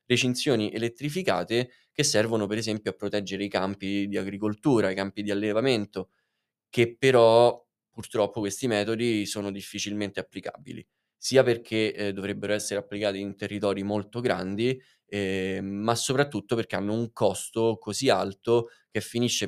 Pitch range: 100-115 Hz